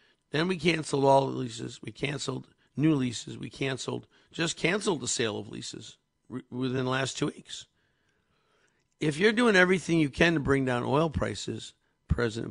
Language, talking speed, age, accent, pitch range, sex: English, 170 wpm, 50-69, American, 120-155 Hz, male